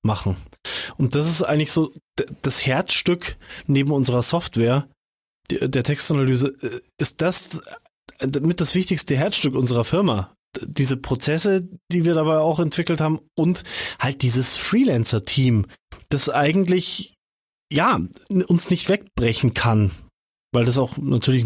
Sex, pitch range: male, 130-165 Hz